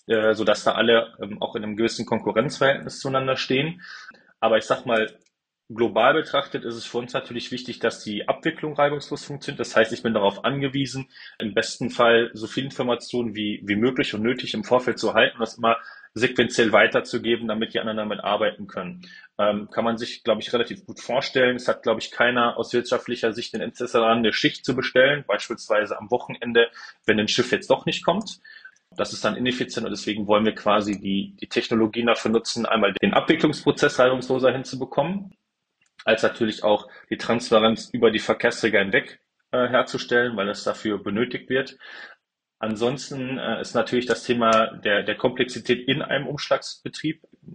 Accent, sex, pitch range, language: German, male, 110-130 Hz, German